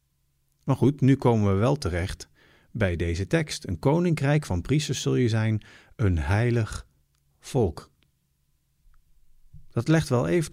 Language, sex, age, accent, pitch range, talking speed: Dutch, male, 50-69, Dutch, 90-155 Hz, 135 wpm